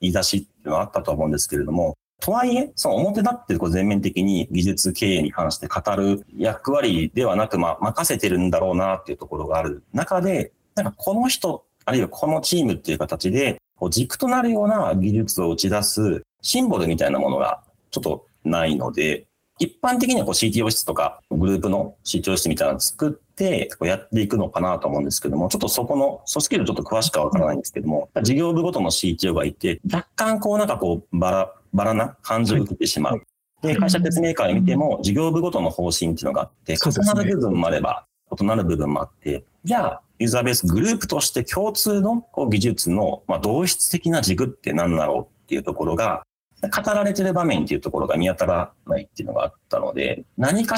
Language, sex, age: Japanese, male, 40-59